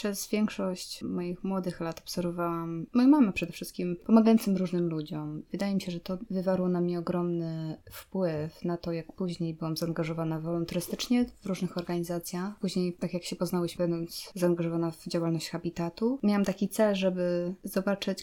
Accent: native